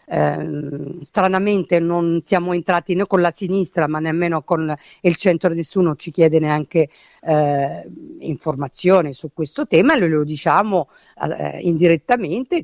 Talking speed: 125 wpm